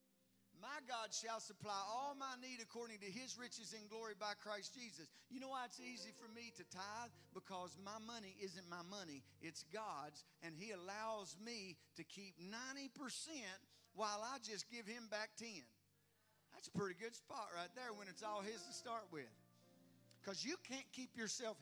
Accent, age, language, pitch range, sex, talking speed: American, 50-69, English, 200-270 Hz, male, 185 wpm